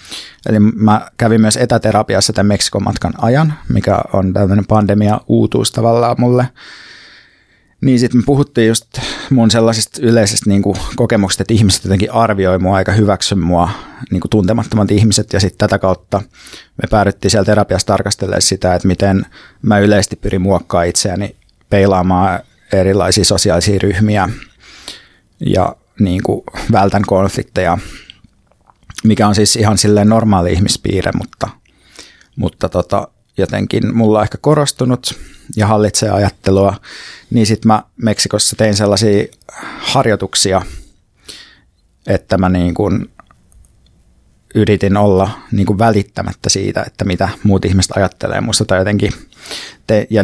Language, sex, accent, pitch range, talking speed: Finnish, male, native, 95-110 Hz, 125 wpm